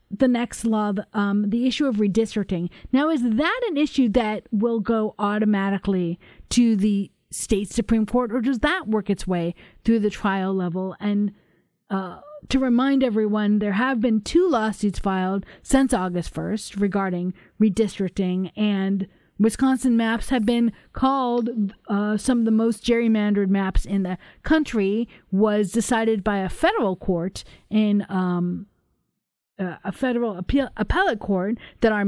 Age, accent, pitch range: 40-59, American, 200-250 Hz